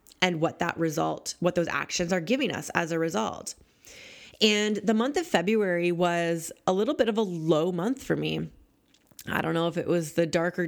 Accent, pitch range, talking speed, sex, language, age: American, 165-195 Hz, 200 wpm, female, English, 20-39